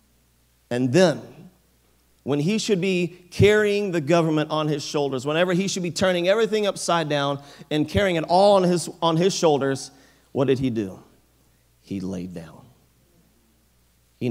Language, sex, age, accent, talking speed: English, male, 40-59, American, 150 wpm